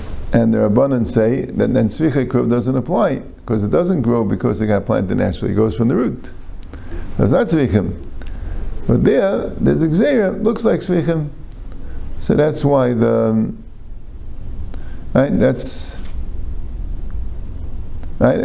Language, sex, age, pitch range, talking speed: English, male, 50-69, 90-125 Hz, 130 wpm